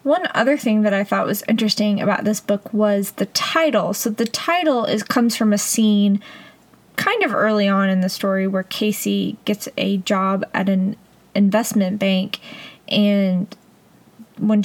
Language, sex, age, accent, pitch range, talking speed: English, female, 20-39, American, 195-225 Hz, 165 wpm